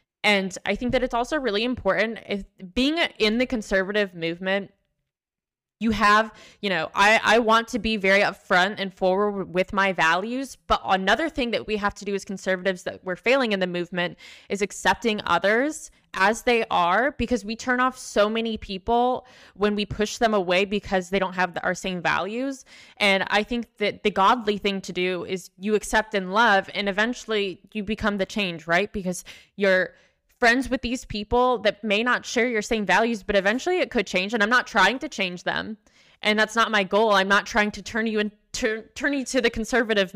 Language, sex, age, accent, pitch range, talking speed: English, female, 20-39, American, 190-230 Hz, 200 wpm